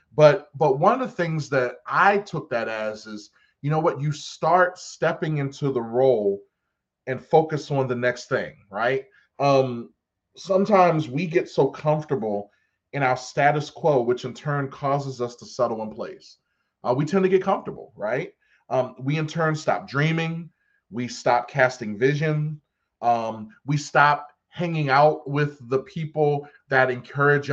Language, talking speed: English, 160 wpm